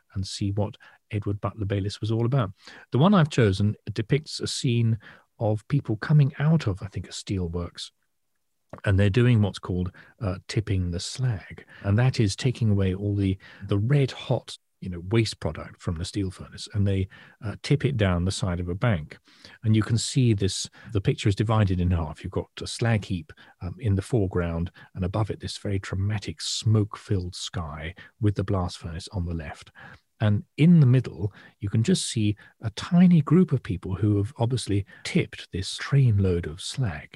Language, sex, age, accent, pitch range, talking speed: English, male, 40-59, British, 95-120 Hz, 190 wpm